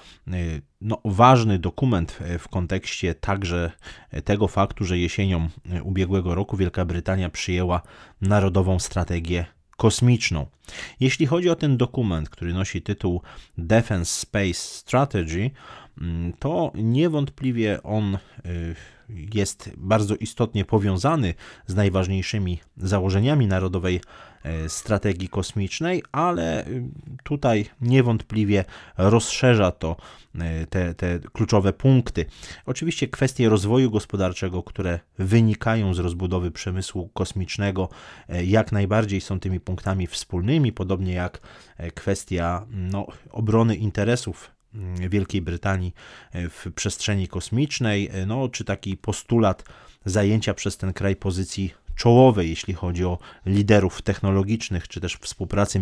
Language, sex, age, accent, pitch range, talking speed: Polish, male, 30-49, native, 90-110 Hz, 100 wpm